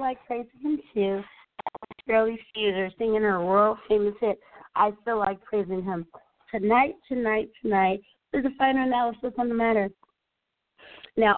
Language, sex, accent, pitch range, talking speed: English, female, American, 195-240 Hz, 150 wpm